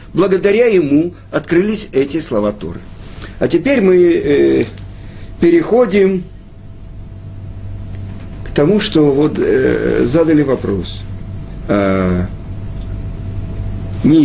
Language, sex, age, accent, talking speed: Russian, male, 50-69, native, 85 wpm